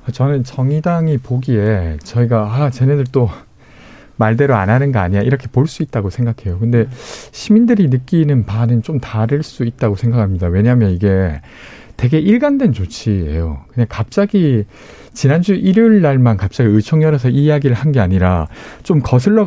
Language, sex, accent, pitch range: Korean, male, native, 110-160 Hz